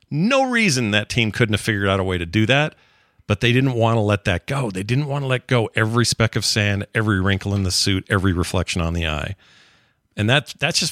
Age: 40-59